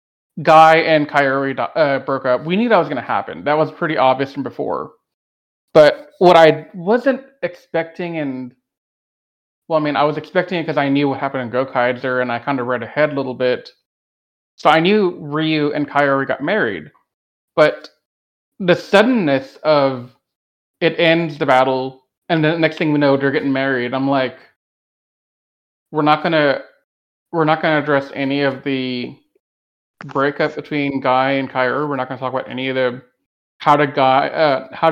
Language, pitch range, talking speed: English, 130-165 Hz, 175 wpm